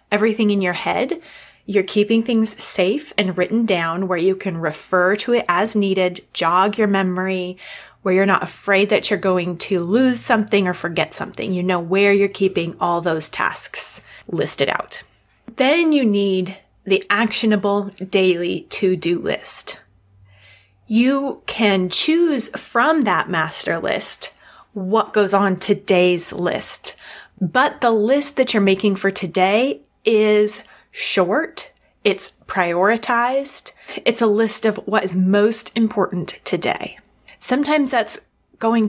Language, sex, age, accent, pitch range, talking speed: English, female, 20-39, American, 185-225 Hz, 135 wpm